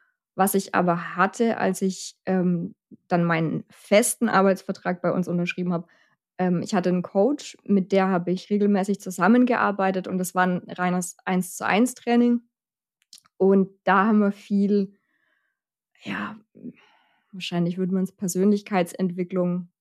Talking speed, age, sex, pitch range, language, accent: 130 wpm, 20-39, female, 185-210 Hz, German, German